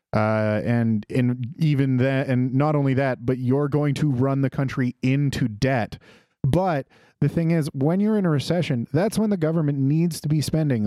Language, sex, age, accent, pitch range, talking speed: English, male, 30-49, American, 115-140 Hz, 195 wpm